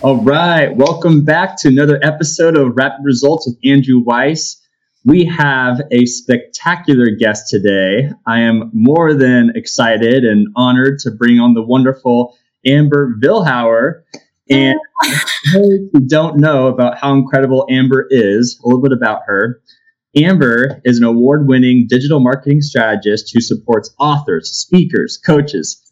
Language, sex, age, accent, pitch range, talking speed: English, male, 20-39, American, 125-150 Hz, 135 wpm